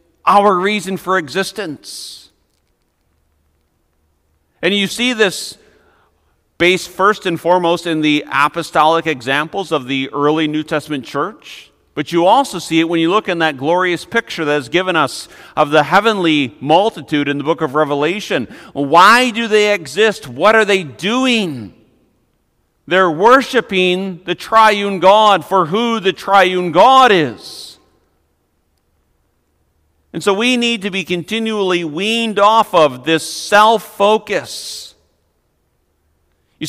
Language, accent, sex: English, American, male